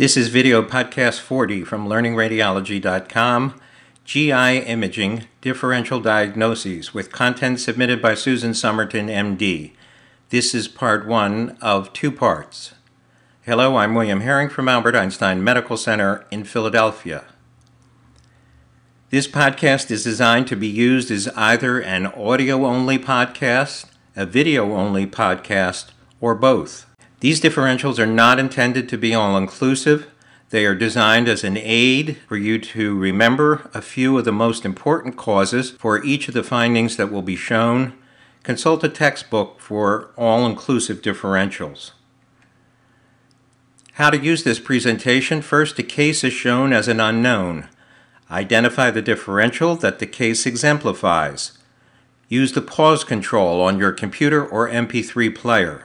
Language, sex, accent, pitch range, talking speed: English, male, American, 110-130 Hz, 130 wpm